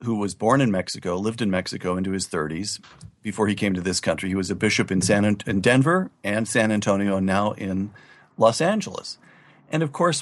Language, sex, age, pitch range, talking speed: English, male, 50-69, 100-135 Hz, 205 wpm